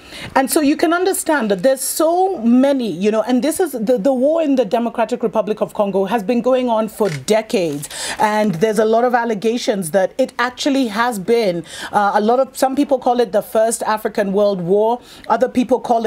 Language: English